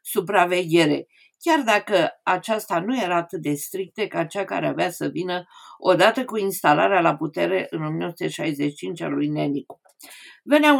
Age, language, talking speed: 50-69, Romanian, 145 wpm